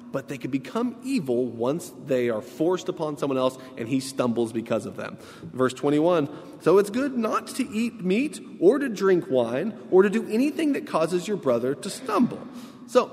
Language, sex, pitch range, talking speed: English, male, 145-215 Hz, 190 wpm